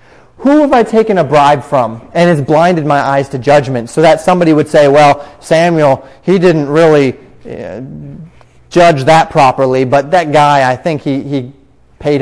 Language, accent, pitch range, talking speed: English, American, 120-160 Hz, 175 wpm